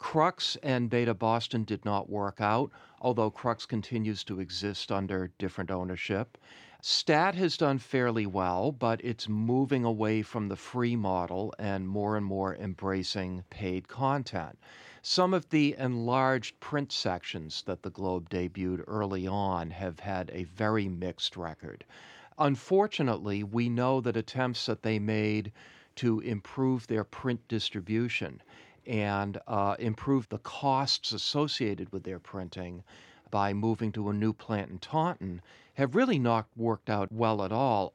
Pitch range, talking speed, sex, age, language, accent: 100-130 Hz, 145 wpm, male, 50-69, English, American